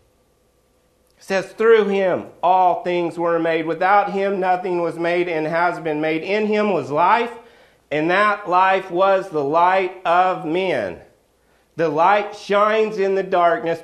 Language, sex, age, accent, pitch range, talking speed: English, male, 40-59, American, 160-210 Hz, 150 wpm